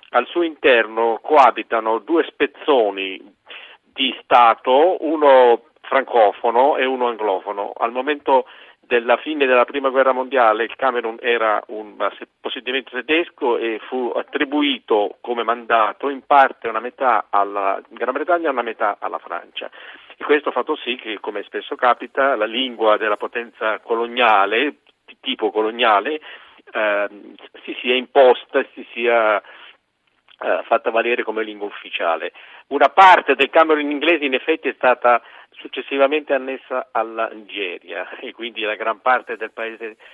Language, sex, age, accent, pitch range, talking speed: Italian, male, 50-69, native, 115-155 Hz, 140 wpm